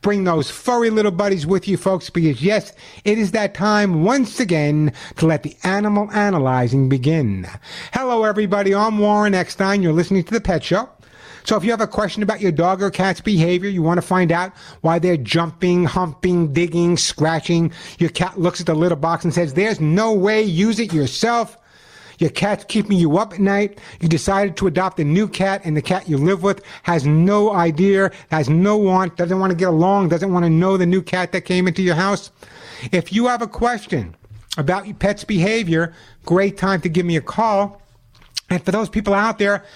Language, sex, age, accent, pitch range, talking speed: English, male, 60-79, American, 165-205 Hz, 205 wpm